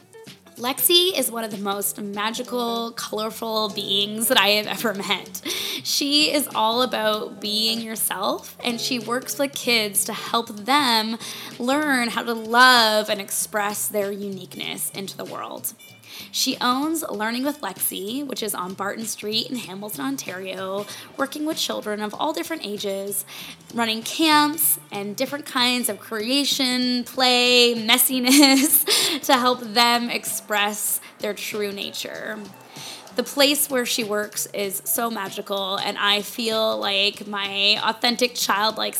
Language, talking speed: English, 140 wpm